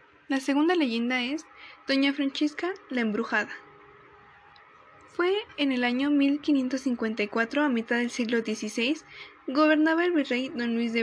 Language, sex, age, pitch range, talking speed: Spanish, female, 10-29, 230-295 Hz, 130 wpm